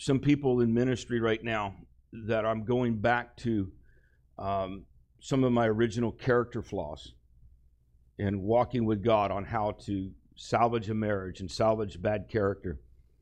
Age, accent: 50-69, American